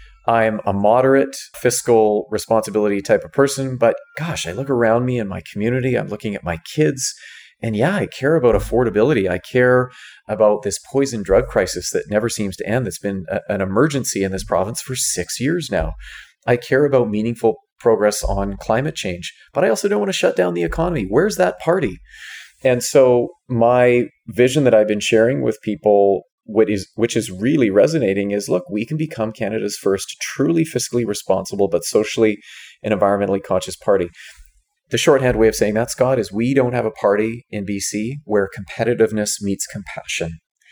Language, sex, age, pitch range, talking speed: English, male, 30-49, 105-125 Hz, 180 wpm